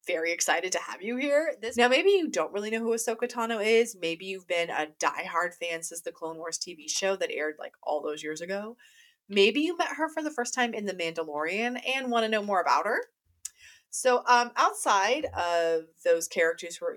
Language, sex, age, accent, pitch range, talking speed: English, female, 30-49, American, 165-275 Hz, 220 wpm